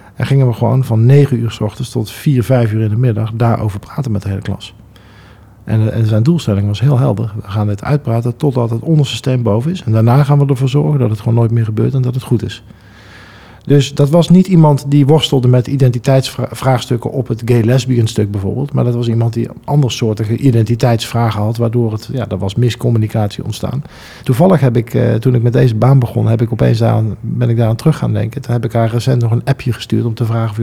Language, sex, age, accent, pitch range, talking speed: Dutch, male, 50-69, Dutch, 110-130 Hz, 230 wpm